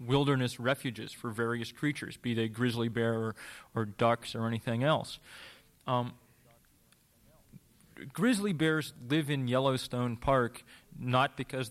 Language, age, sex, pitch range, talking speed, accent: English, 30-49, male, 120-135 Hz, 125 wpm, American